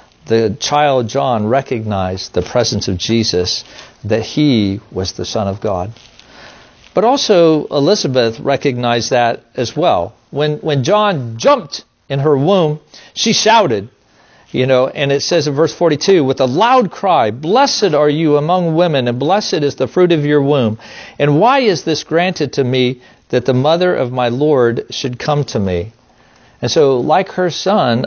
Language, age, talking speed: English, 50-69, 165 wpm